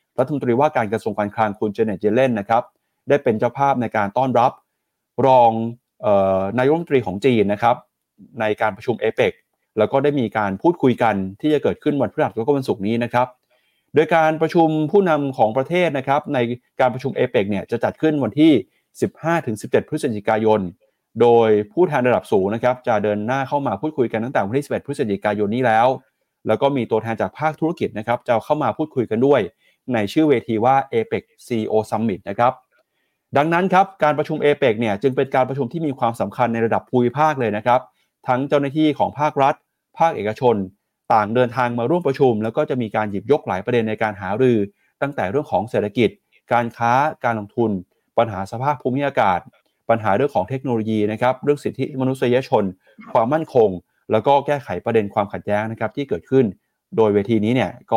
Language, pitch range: Thai, 110-145 Hz